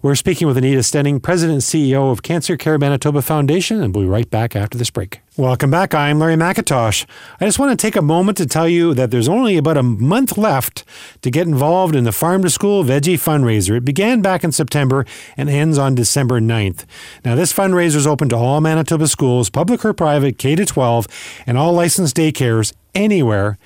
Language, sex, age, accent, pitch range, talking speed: English, male, 40-59, American, 120-165 Hz, 205 wpm